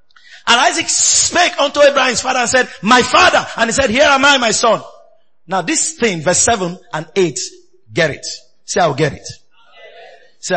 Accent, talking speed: Nigerian, 180 wpm